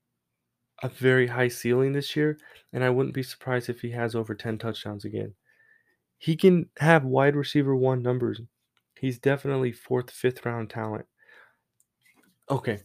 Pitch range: 115-140 Hz